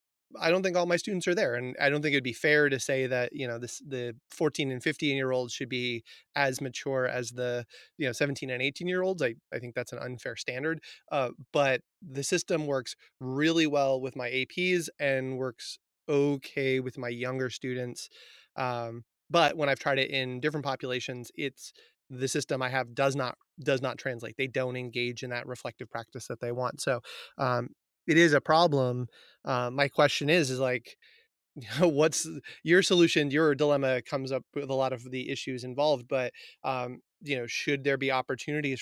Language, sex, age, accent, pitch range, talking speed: English, male, 30-49, American, 125-145 Hz, 195 wpm